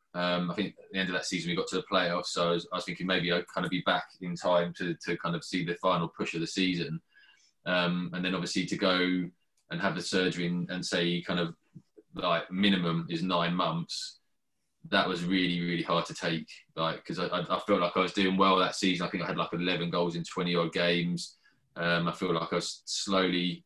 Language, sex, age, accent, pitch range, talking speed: English, male, 20-39, British, 85-95 Hz, 240 wpm